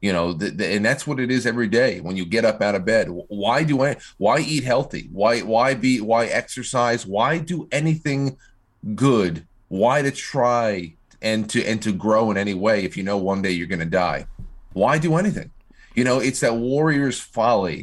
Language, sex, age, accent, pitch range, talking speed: English, male, 30-49, American, 95-125 Hz, 200 wpm